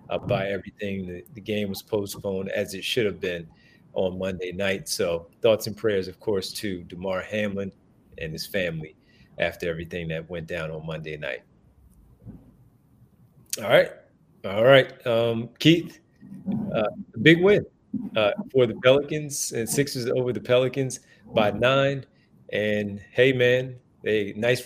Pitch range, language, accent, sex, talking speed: 100-125 Hz, English, American, male, 150 wpm